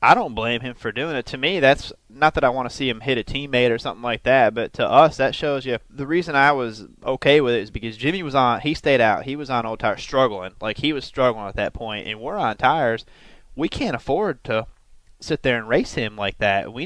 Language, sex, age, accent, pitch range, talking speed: English, male, 20-39, American, 110-135 Hz, 265 wpm